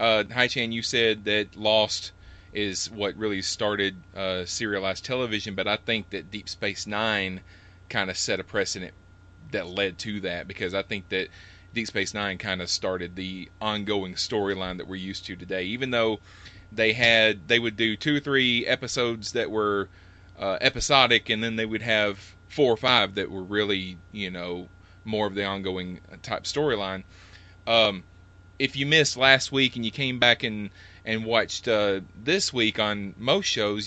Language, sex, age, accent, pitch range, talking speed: English, male, 30-49, American, 95-110 Hz, 180 wpm